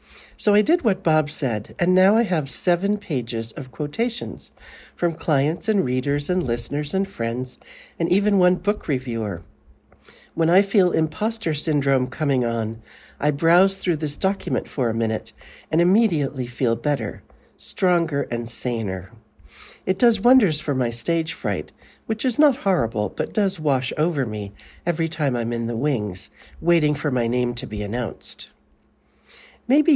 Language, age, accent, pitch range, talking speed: English, 60-79, American, 120-190 Hz, 160 wpm